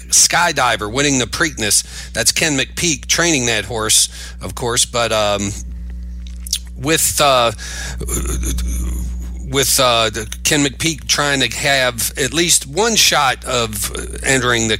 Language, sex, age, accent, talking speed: English, male, 40-59, American, 120 wpm